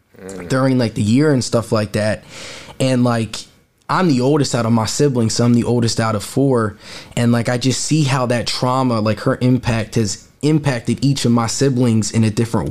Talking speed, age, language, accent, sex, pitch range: 210 wpm, 20-39, English, American, male, 115-125 Hz